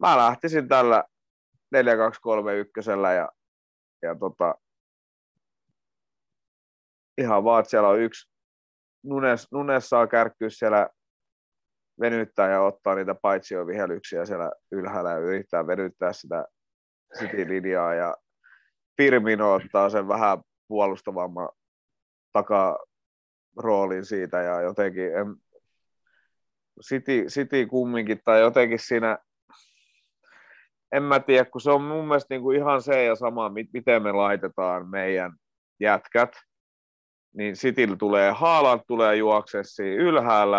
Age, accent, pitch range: 30-49, native, 90-125 Hz